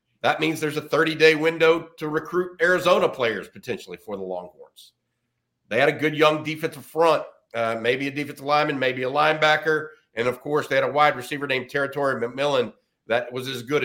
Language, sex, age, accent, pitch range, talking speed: English, male, 50-69, American, 130-165 Hz, 190 wpm